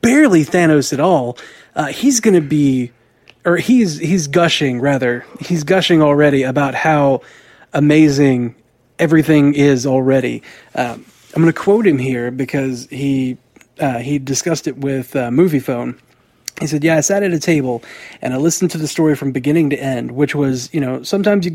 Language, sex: English, male